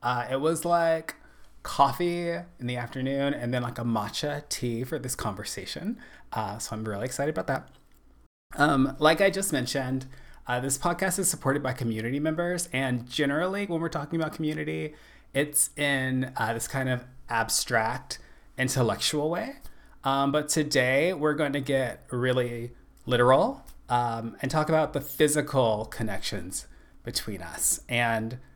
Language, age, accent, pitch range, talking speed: English, 30-49, American, 120-155 Hz, 150 wpm